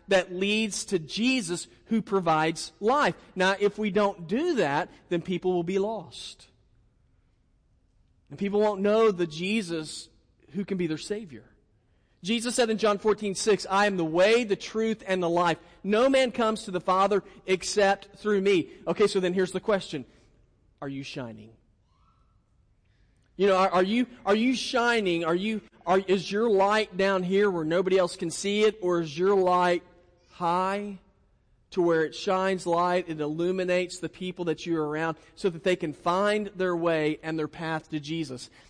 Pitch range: 160-205 Hz